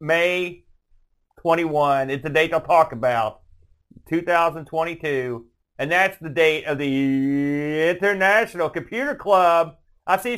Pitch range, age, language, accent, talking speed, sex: 145-200 Hz, 40-59, English, American, 115 wpm, male